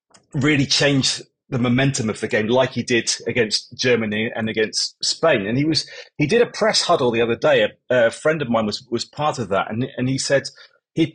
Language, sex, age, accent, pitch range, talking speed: English, male, 30-49, British, 120-150 Hz, 220 wpm